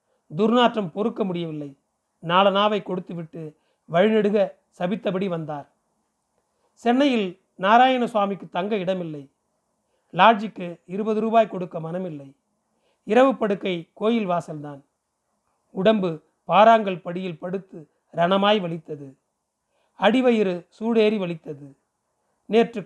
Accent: native